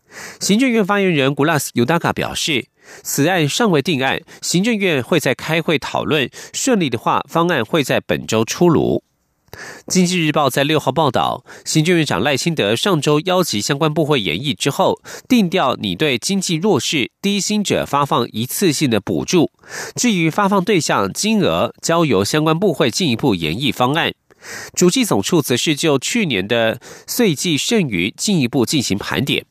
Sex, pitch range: male, 140-190 Hz